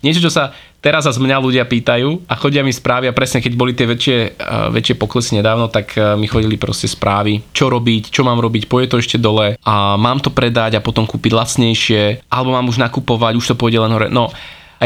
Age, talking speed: 20-39, 220 wpm